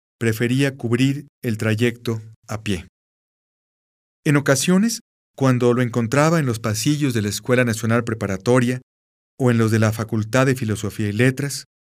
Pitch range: 110-140 Hz